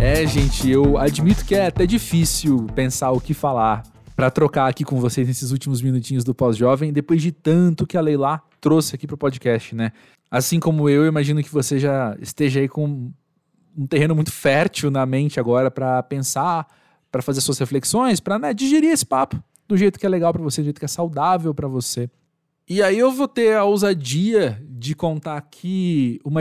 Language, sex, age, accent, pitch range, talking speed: Portuguese, male, 20-39, Brazilian, 135-165 Hz, 200 wpm